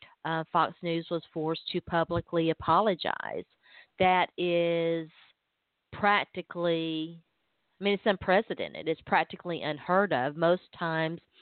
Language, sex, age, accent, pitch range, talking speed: English, female, 40-59, American, 160-180 Hz, 110 wpm